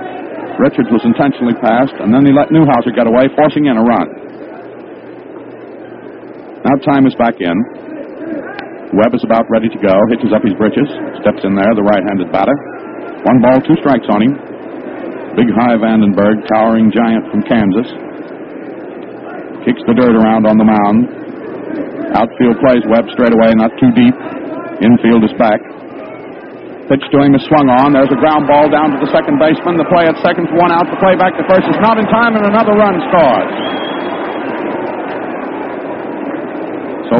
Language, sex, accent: English, male, American